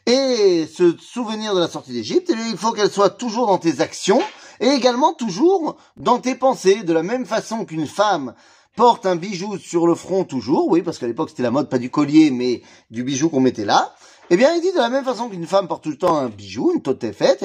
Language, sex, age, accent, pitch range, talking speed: French, male, 30-49, French, 160-255 Hz, 235 wpm